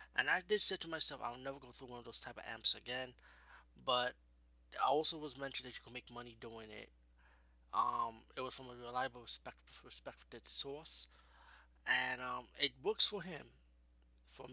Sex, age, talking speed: male, 20-39, 185 wpm